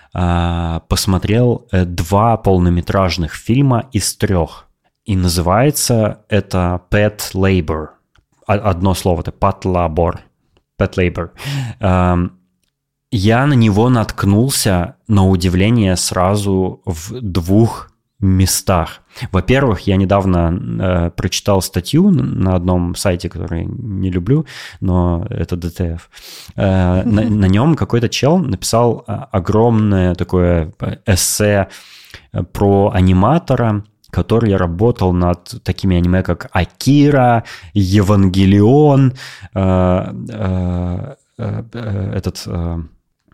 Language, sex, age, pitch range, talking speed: Russian, male, 20-39, 90-115 Hz, 95 wpm